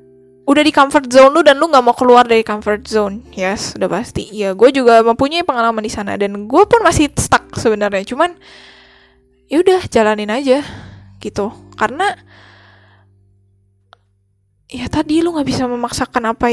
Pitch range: 205-300 Hz